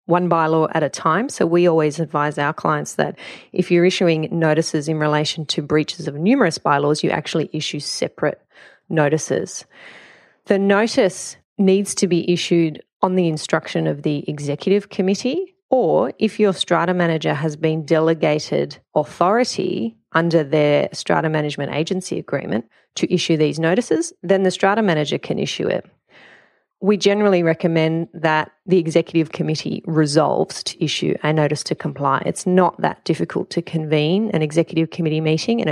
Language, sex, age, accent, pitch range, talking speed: English, female, 30-49, Australian, 155-190 Hz, 155 wpm